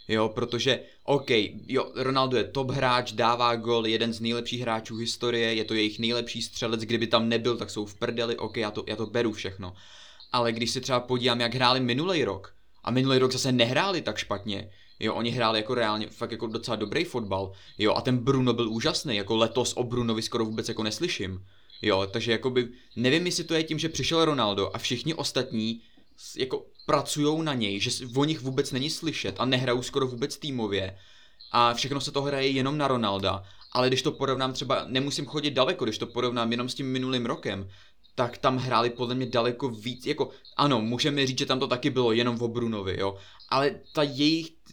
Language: Czech